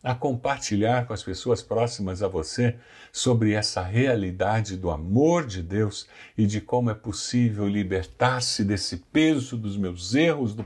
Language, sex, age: Portuguese, male, 60-79